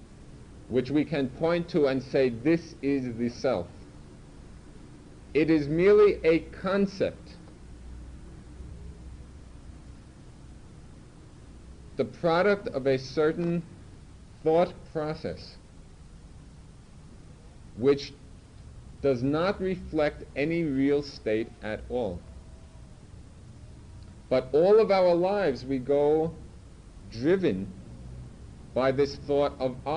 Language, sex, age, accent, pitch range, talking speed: English, male, 50-69, American, 90-150 Hz, 90 wpm